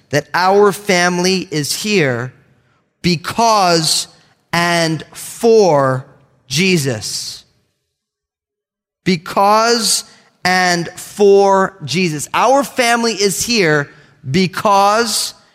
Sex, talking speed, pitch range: male, 70 wpm, 165-220 Hz